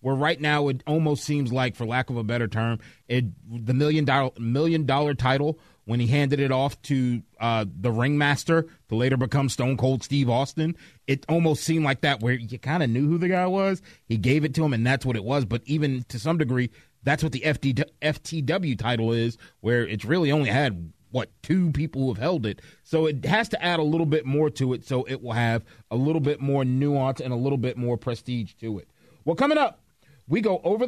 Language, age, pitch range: English, 30-49, 120-160 Hz